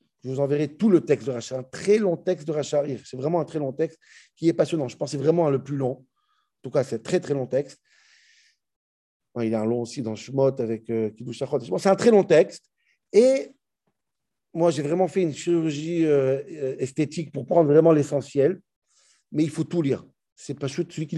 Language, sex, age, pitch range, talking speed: French, male, 50-69, 140-195 Hz, 220 wpm